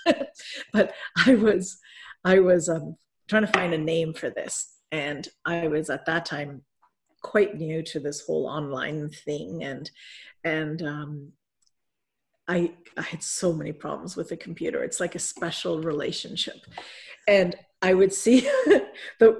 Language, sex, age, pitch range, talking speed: English, female, 50-69, 170-235 Hz, 150 wpm